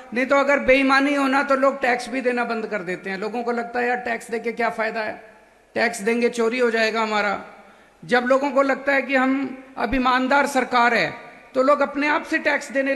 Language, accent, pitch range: Hindi, native, 240-280 Hz